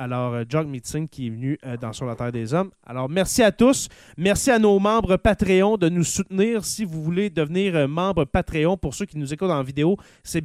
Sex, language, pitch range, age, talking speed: male, French, 140-190 Hz, 30-49, 220 wpm